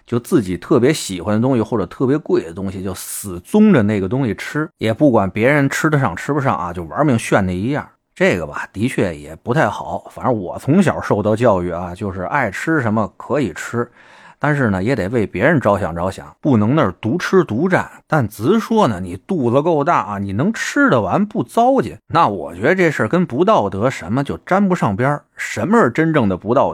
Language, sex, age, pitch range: Chinese, male, 30-49, 95-160 Hz